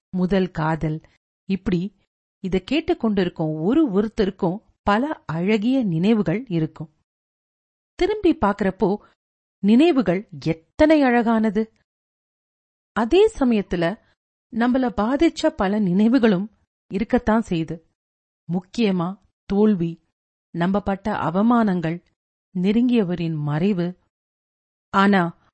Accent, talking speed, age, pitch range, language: native, 75 wpm, 40-59, 170-230 Hz, Tamil